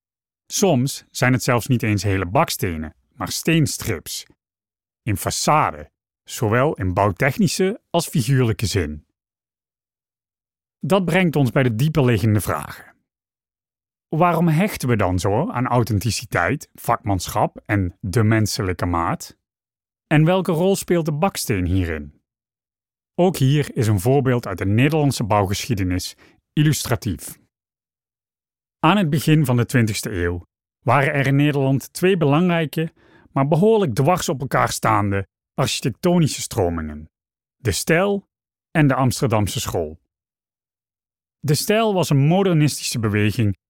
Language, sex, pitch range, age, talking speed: Dutch, male, 100-155 Hz, 40-59, 120 wpm